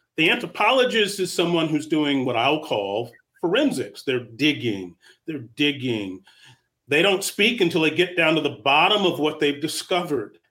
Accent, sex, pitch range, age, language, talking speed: American, male, 130-215 Hz, 40-59, English, 160 wpm